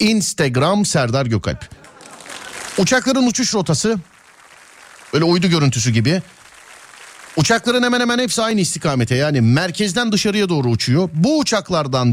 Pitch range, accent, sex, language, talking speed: 125-200 Hz, native, male, Turkish, 115 wpm